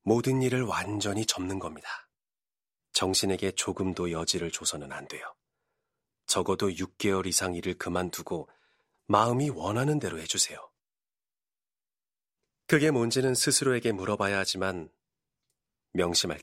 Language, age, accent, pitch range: Korean, 30-49, native, 95-125 Hz